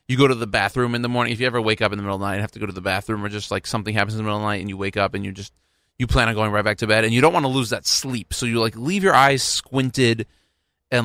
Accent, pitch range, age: American, 95-120 Hz, 30-49